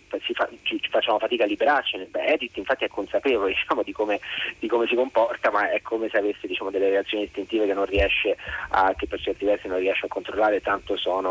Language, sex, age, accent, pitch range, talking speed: Italian, male, 30-49, native, 100-125 Hz, 210 wpm